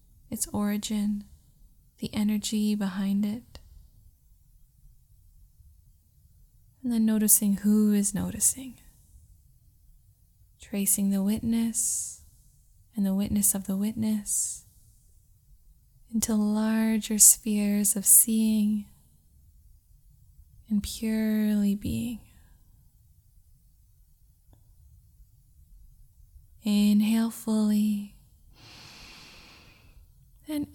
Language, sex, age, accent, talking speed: English, female, 10-29, American, 60 wpm